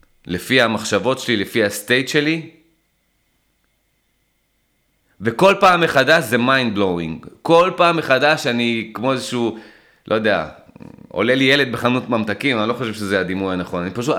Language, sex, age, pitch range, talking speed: Hebrew, male, 30-49, 105-150 Hz, 140 wpm